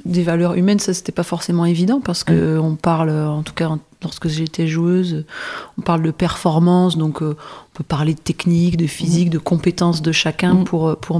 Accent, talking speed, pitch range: French, 210 wpm, 160-185 Hz